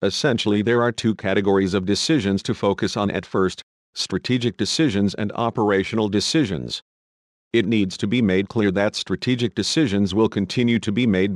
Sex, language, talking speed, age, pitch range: male, English, 165 wpm, 50-69, 95-115 Hz